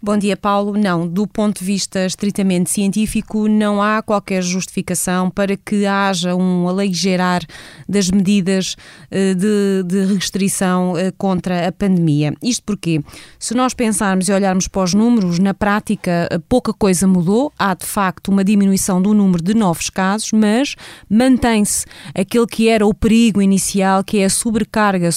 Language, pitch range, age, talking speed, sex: Portuguese, 185-215 Hz, 20-39, 150 wpm, female